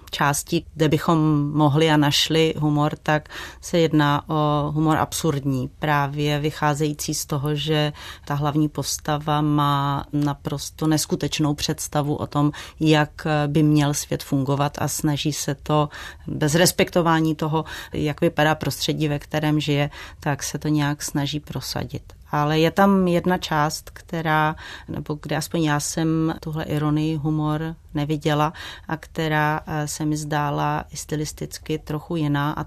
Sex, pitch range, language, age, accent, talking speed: female, 145-155 Hz, Czech, 30-49, native, 140 wpm